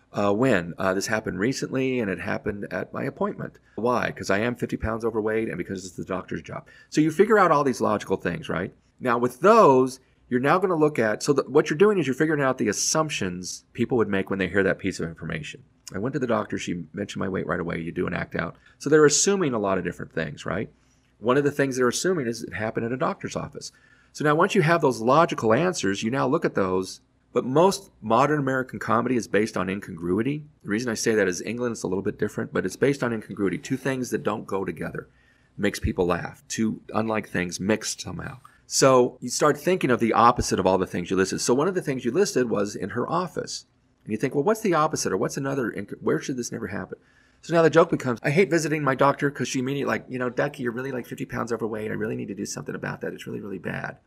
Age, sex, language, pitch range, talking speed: 40-59, male, English, 105-145 Hz, 255 wpm